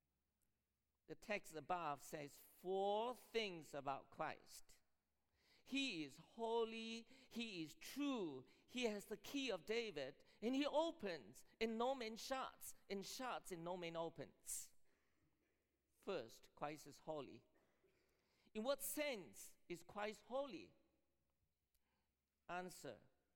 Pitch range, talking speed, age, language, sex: 165-250 Hz, 115 wpm, 50-69, English, male